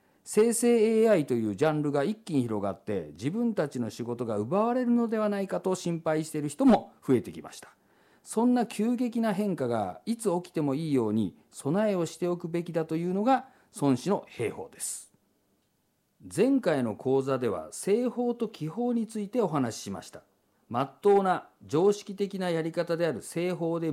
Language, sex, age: Japanese, male, 50-69